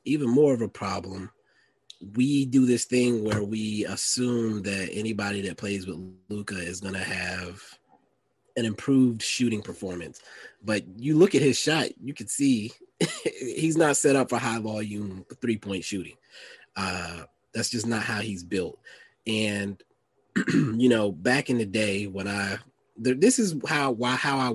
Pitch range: 100-130 Hz